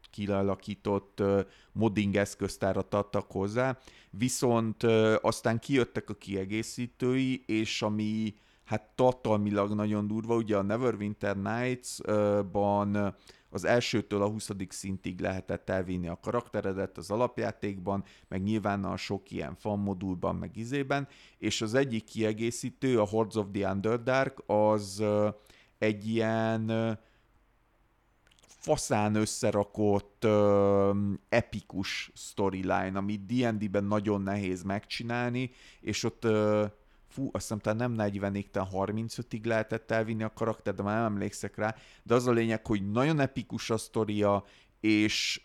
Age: 30-49